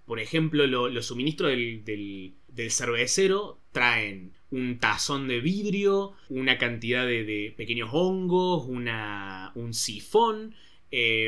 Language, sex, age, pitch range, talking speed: Spanish, male, 20-39, 115-165 Hz, 130 wpm